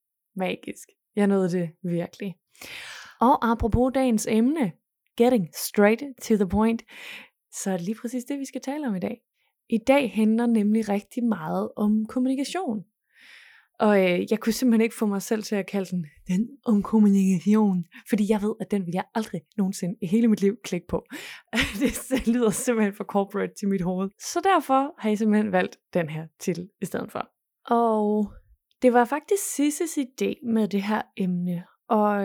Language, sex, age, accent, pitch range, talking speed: Danish, female, 20-39, native, 195-240 Hz, 180 wpm